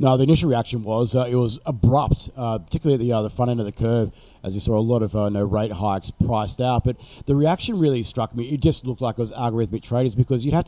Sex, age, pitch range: male, 40-59, 110-130 Hz